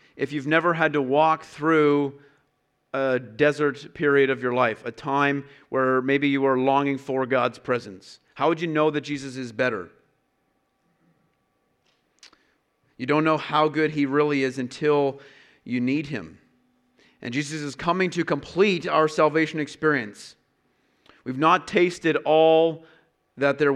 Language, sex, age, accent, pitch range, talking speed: English, male, 40-59, American, 130-155 Hz, 145 wpm